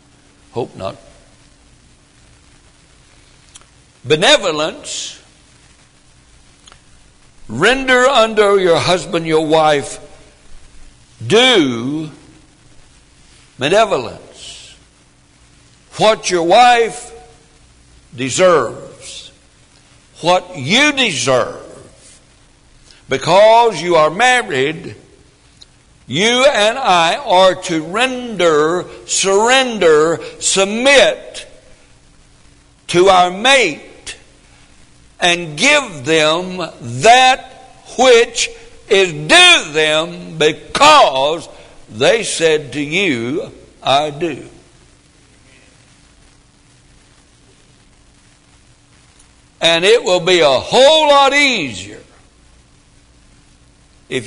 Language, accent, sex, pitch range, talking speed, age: English, American, male, 150-240 Hz, 65 wpm, 60-79